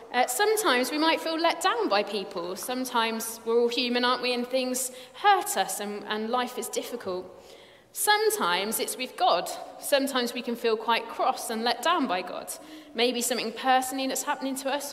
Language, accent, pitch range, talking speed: English, British, 210-285 Hz, 185 wpm